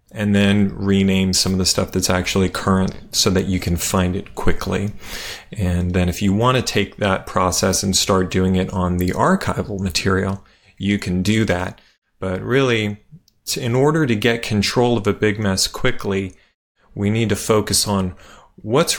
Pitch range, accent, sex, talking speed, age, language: 95-110 Hz, American, male, 175 wpm, 30-49, English